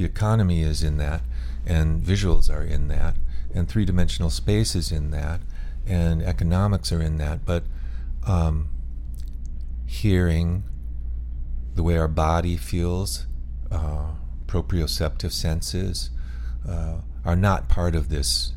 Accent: American